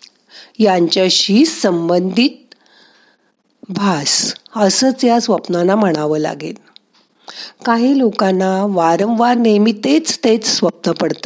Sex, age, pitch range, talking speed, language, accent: female, 50-69, 180-240 Hz, 85 wpm, Marathi, native